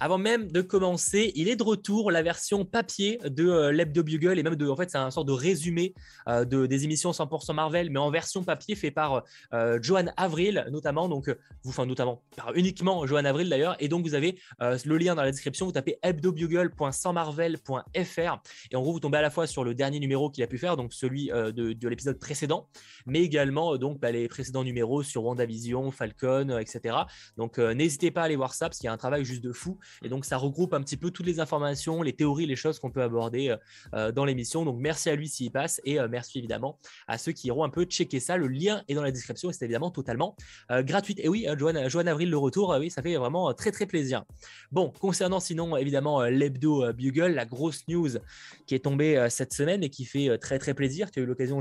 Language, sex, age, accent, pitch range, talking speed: French, male, 20-39, French, 130-170 Hz, 245 wpm